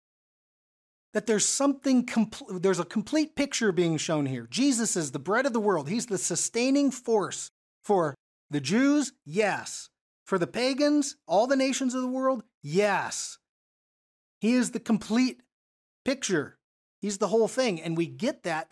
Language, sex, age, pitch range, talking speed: English, male, 30-49, 175-245 Hz, 155 wpm